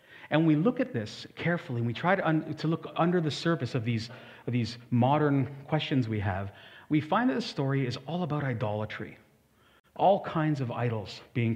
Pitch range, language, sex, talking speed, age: 115-155 Hz, English, male, 185 wpm, 40-59